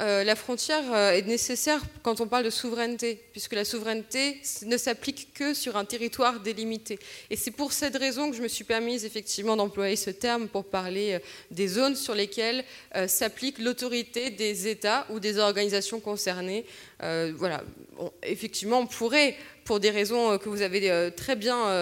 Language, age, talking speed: French, 20-39, 180 wpm